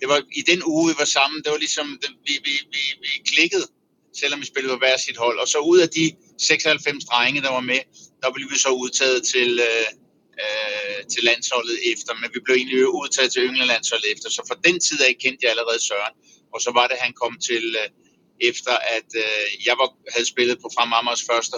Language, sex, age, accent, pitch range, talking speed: Danish, male, 60-79, native, 120-175 Hz, 225 wpm